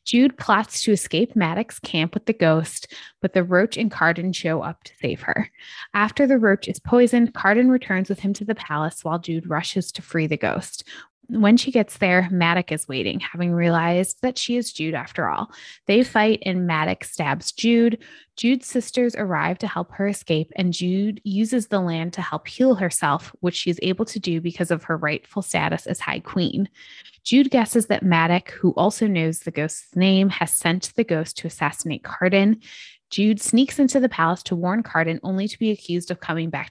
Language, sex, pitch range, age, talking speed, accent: English, female, 165-220 Hz, 20-39, 200 wpm, American